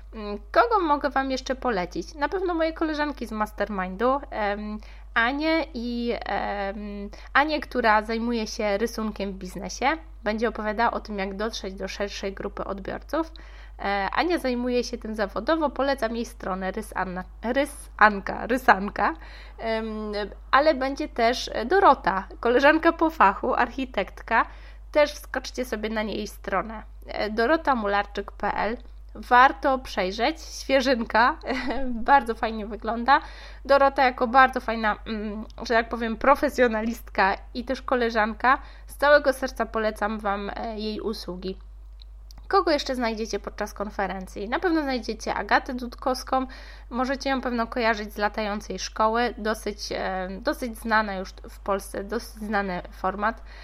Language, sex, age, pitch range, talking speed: Polish, female, 20-39, 205-265 Hz, 115 wpm